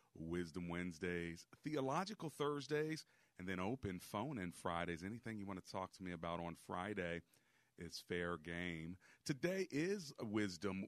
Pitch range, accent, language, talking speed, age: 90-105 Hz, American, English, 145 wpm, 40-59